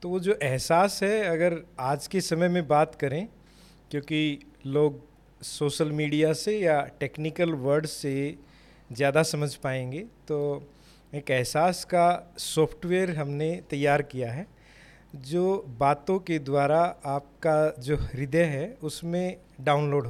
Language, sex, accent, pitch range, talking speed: English, male, Indian, 140-170 Hz, 130 wpm